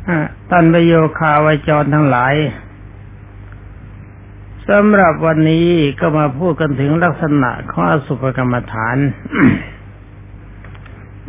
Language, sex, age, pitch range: Thai, male, 60-79, 100-160 Hz